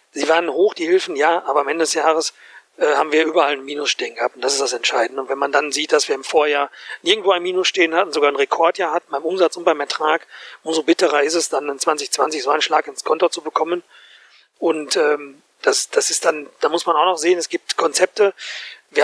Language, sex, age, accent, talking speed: German, male, 40-59, German, 245 wpm